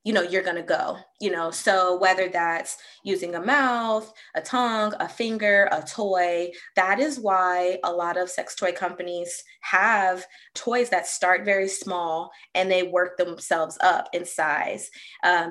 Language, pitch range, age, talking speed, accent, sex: English, 180-225 Hz, 20-39, 165 wpm, American, female